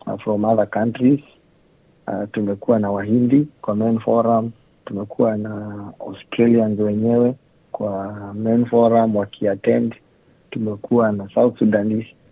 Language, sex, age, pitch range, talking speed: Swahili, male, 50-69, 100-115 Hz, 110 wpm